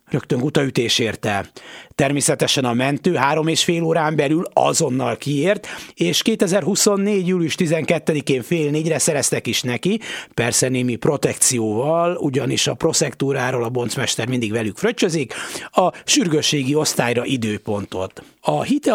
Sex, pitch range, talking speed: male, 125-170 Hz, 125 wpm